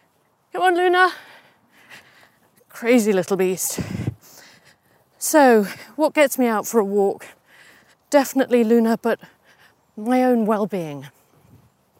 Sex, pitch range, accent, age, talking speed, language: female, 170-220 Hz, British, 40-59, 100 wpm, English